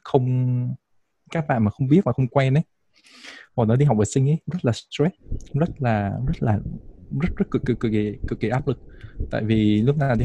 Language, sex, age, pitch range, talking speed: Vietnamese, male, 20-39, 110-135 Hz, 245 wpm